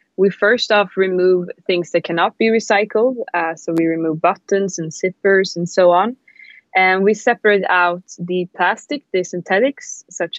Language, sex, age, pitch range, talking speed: English, female, 20-39, 170-200 Hz, 160 wpm